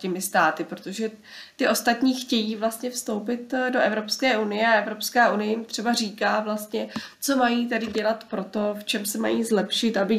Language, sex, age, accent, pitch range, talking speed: Czech, female, 20-39, native, 205-235 Hz, 170 wpm